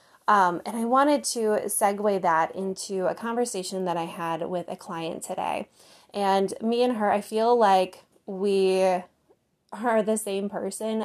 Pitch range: 175-215 Hz